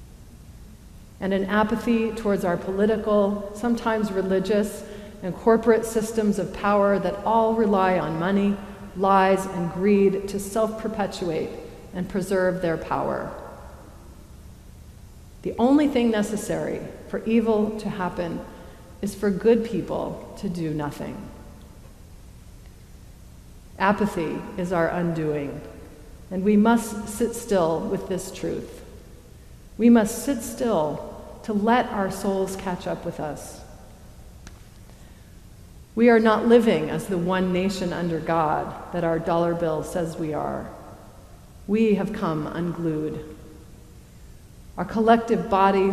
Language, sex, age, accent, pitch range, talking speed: English, female, 40-59, American, 175-215 Hz, 120 wpm